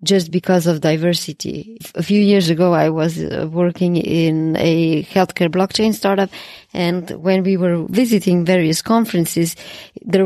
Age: 20-39